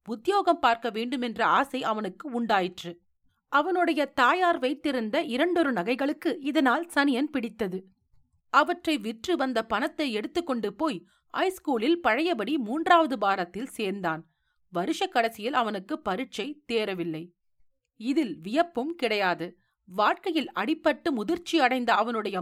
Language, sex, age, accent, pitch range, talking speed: Tamil, female, 40-59, native, 220-320 Hz, 105 wpm